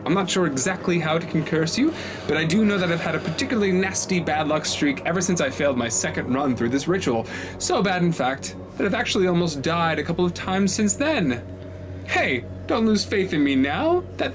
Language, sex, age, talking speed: English, male, 20-39, 225 wpm